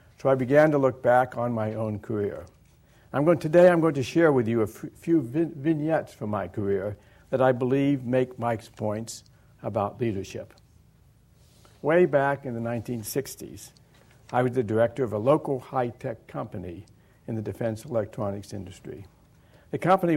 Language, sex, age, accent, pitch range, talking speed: English, male, 60-79, American, 110-140 Hz, 165 wpm